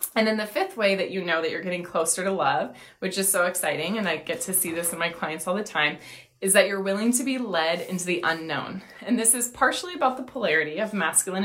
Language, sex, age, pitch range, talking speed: English, female, 20-39, 170-200 Hz, 255 wpm